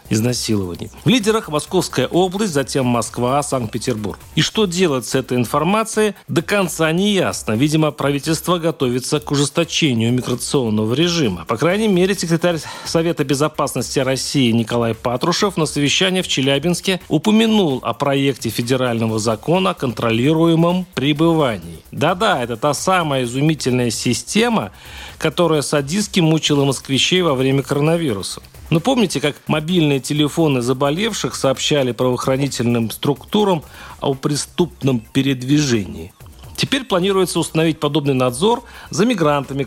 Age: 40-59